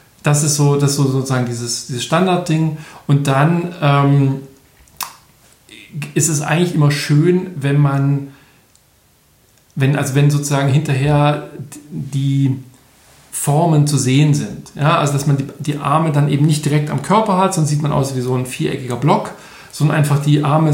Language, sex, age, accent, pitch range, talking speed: German, male, 40-59, German, 135-155 Hz, 160 wpm